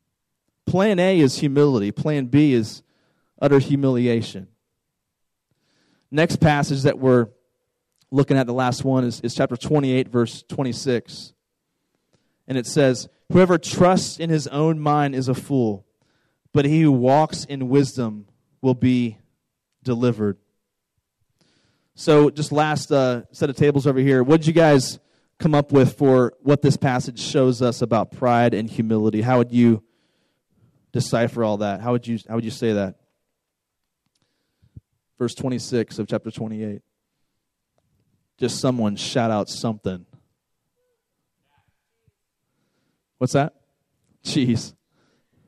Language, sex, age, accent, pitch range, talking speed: English, male, 30-49, American, 115-145 Hz, 130 wpm